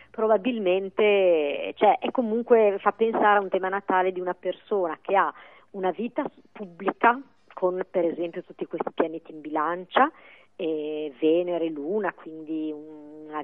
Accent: native